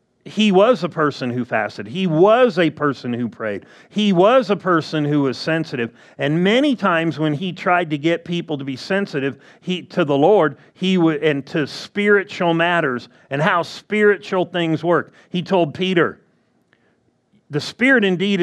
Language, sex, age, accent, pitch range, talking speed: English, male, 40-59, American, 150-195 Hz, 165 wpm